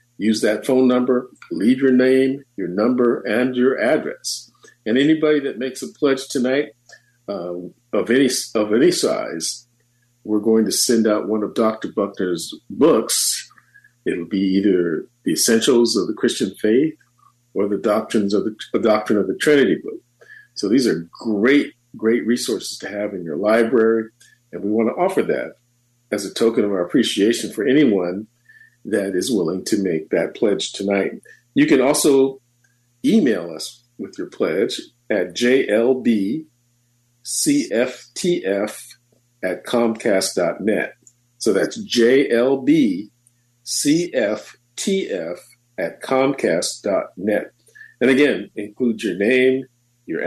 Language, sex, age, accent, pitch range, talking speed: English, male, 50-69, American, 110-130 Hz, 135 wpm